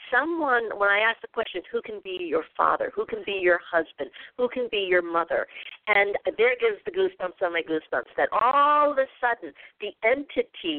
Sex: female